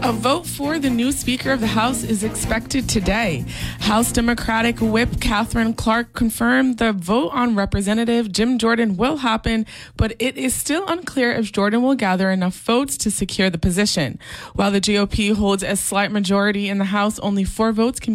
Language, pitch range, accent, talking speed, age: English, 190-235 Hz, American, 180 wpm, 20-39